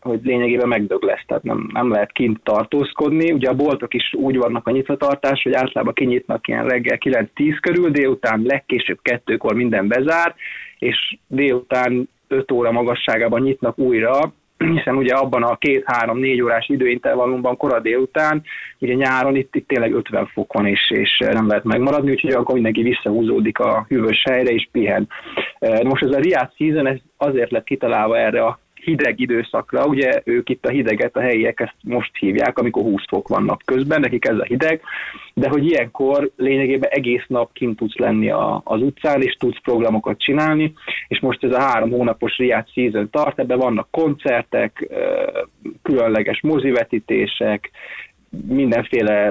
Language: Hungarian